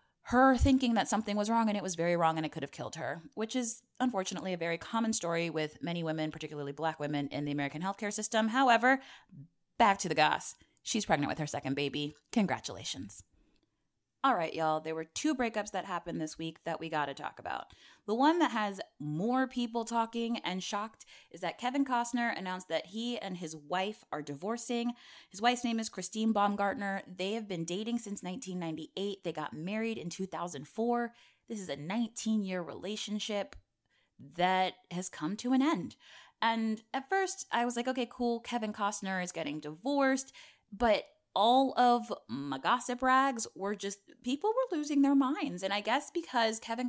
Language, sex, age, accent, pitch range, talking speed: English, female, 20-39, American, 170-240 Hz, 185 wpm